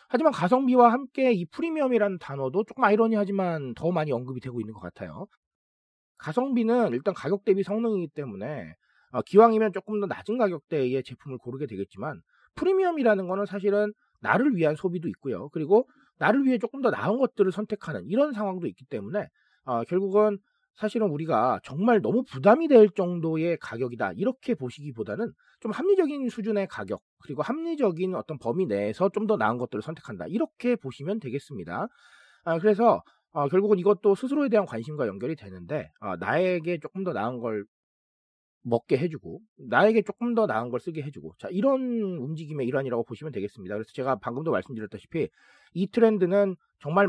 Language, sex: Korean, male